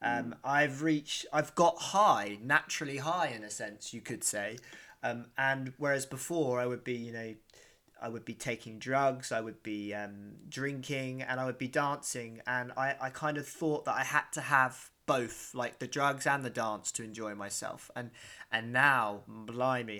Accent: British